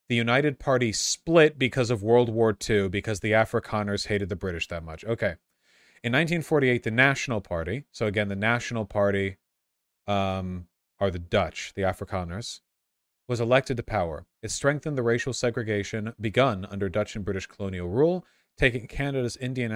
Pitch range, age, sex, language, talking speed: 100-125 Hz, 30-49, male, English, 160 wpm